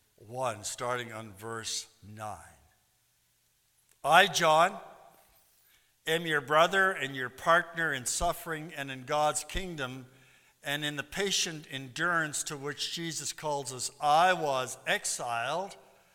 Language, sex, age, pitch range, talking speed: English, male, 60-79, 145-195 Hz, 120 wpm